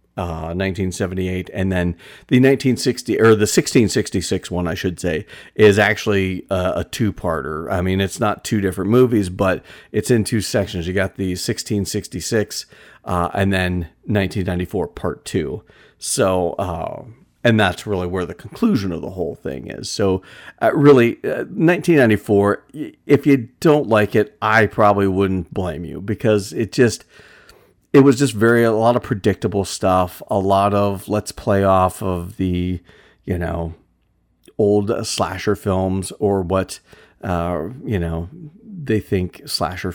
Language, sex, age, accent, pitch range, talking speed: English, male, 40-59, American, 90-110 Hz, 150 wpm